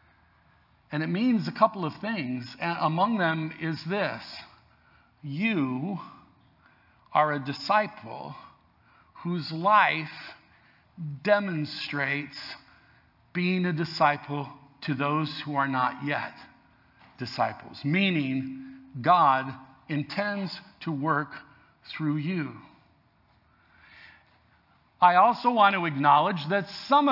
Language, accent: English, American